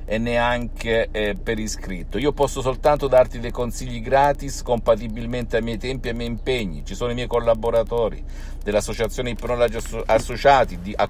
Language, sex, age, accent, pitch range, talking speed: Italian, male, 50-69, native, 105-130 Hz, 155 wpm